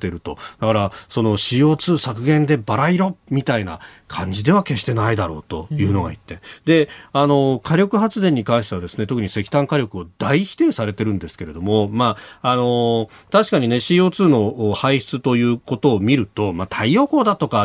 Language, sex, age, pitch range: Japanese, male, 40-59, 105-160 Hz